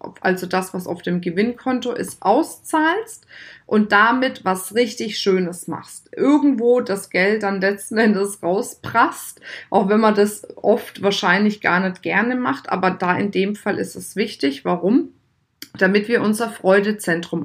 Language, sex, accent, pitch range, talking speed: German, female, German, 180-210 Hz, 150 wpm